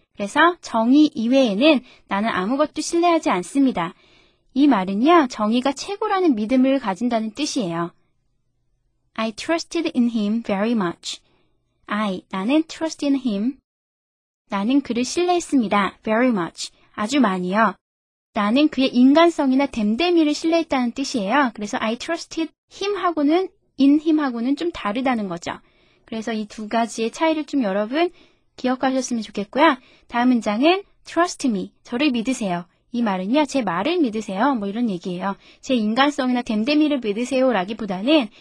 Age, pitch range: 20-39, 210-305 Hz